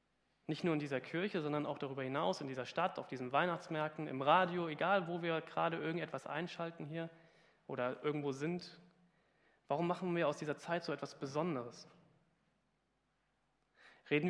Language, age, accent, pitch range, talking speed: German, 30-49, German, 145-180 Hz, 155 wpm